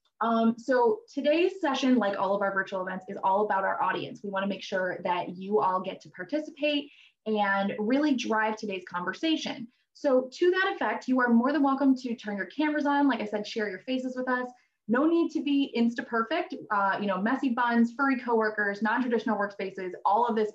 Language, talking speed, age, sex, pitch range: English, 200 wpm, 20-39, female, 195-270 Hz